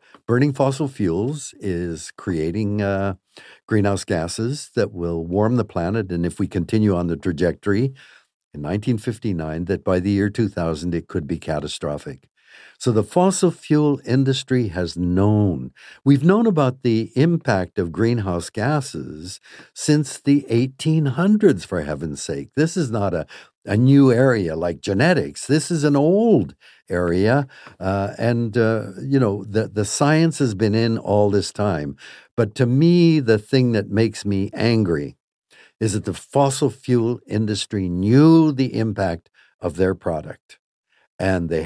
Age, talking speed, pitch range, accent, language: 60-79, 150 wpm, 95-135 Hz, American, English